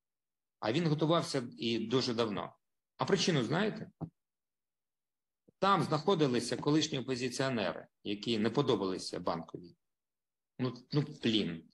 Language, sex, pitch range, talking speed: Ukrainian, male, 120-150 Hz, 100 wpm